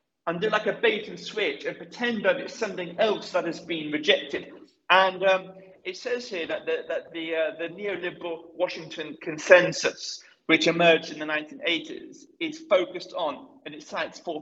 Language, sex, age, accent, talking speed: English, male, 40-59, British, 185 wpm